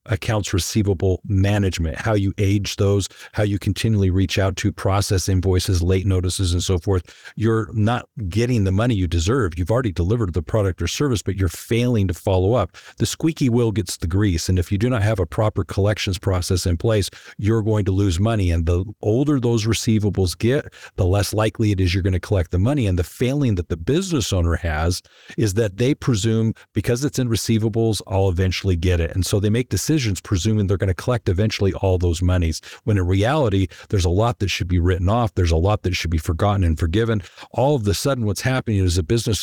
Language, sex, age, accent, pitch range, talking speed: English, male, 50-69, American, 90-115 Hz, 220 wpm